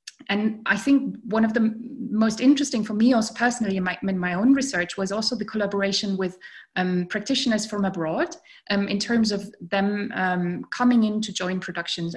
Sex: female